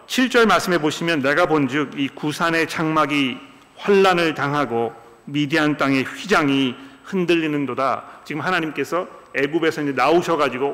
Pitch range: 130-165 Hz